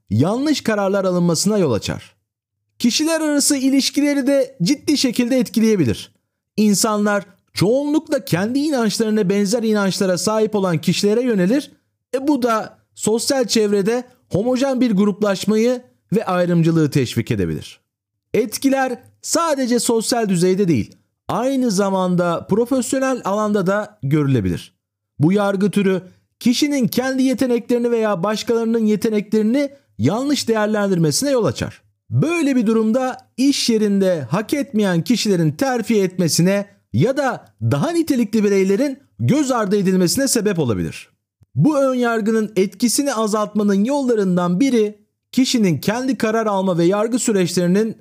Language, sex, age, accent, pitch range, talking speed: Turkish, male, 40-59, native, 175-250 Hz, 115 wpm